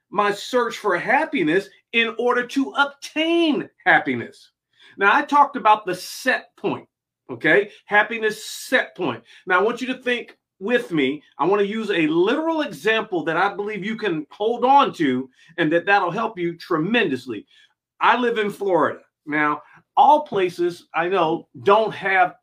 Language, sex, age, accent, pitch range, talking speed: English, male, 40-59, American, 180-270 Hz, 160 wpm